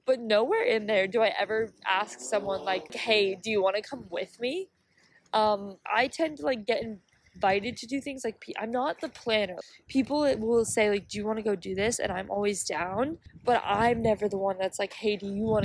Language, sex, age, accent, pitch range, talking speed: English, female, 20-39, American, 195-240 Hz, 235 wpm